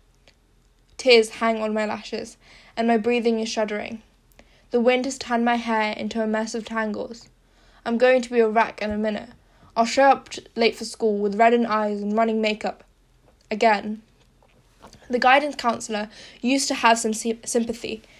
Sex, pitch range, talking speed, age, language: female, 220-240 Hz, 170 wpm, 10-29, English